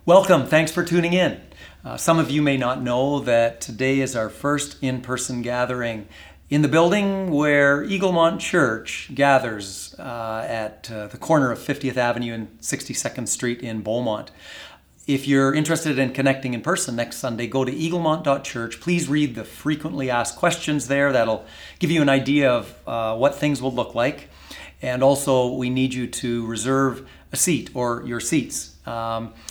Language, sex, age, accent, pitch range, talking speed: English, male, 40-59, American, 115-135 Hz, 170 wpm